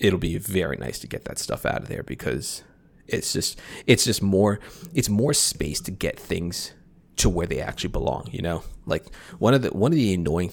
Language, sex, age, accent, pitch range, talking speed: English, male, 30-49, American, 85-100 Hz, 215 wpm